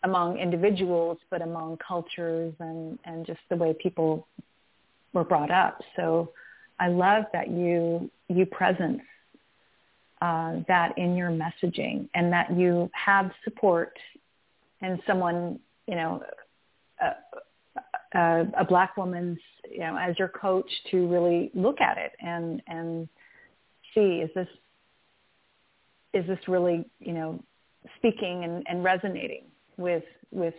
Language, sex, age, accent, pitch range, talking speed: English, female, 30-49, American, 170-200 Hz, 130 wpm